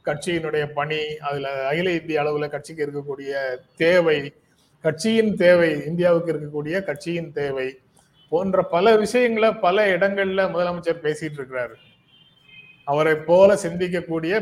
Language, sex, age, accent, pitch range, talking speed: Tamil, male, 30-49, native, 150-195 Hz, 110 wpm